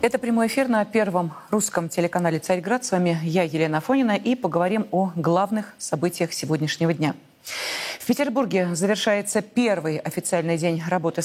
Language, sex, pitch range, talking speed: Russian, female, 175-235 Hz, 145 wpm